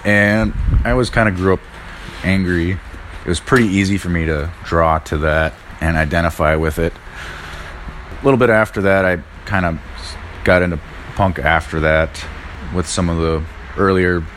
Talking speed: 165 wpm